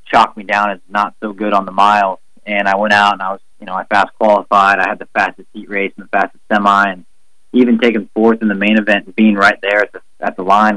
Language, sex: English, male